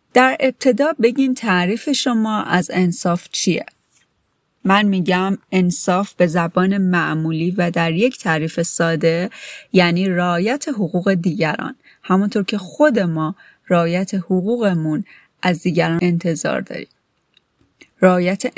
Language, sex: Persian, female